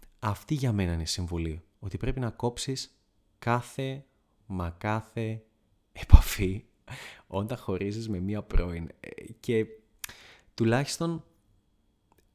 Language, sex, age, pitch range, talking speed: Greek, male, 20-39, 100-130 Hz, 100 wpm